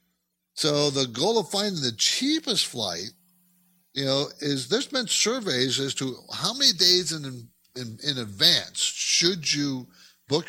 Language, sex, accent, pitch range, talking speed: English, male, American, 105-155 Hz, 145 wpm